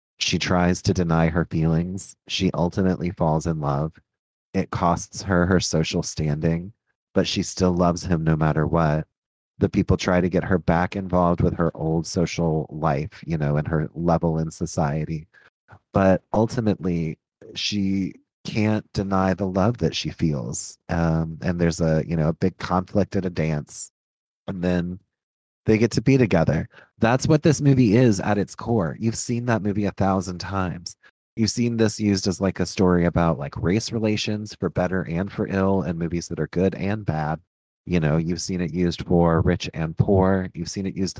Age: 30-49